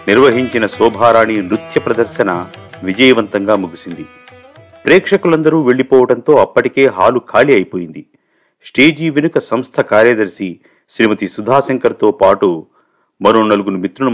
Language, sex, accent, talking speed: Telugu, male, native, 95 wpm